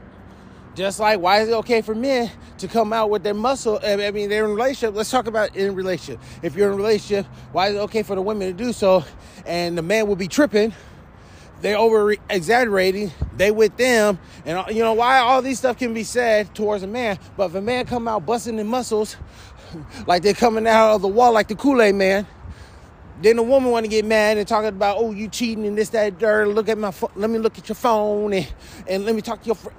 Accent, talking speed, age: American, 240 wpm, 20-39